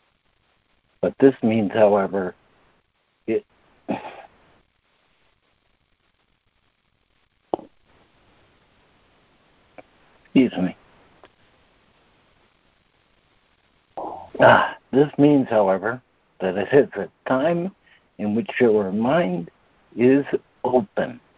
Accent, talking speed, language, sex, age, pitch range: American, 60 wpm, English, male, 60-79, 100-125 Hz